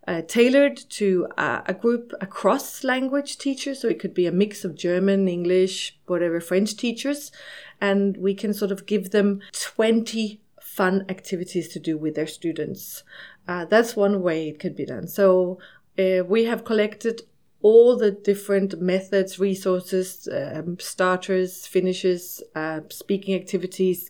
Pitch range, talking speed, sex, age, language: 175-210 Hz, 150 wpm, female, 30-49, German